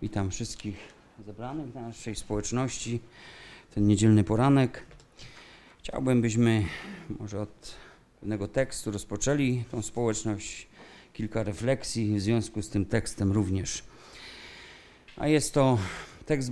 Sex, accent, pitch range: male, native, 105-135 Hz